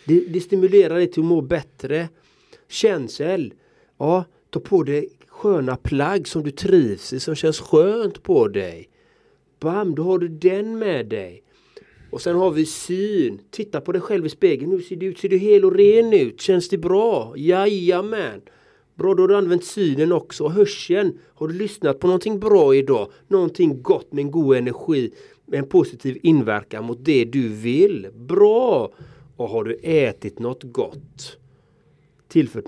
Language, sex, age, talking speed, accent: Swedish, male, 30-49, 165 wpm, native